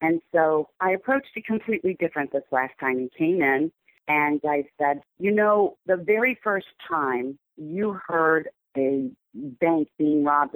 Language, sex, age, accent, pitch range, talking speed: English, female, 50-69, American, 145-190 Hz, 160 wpm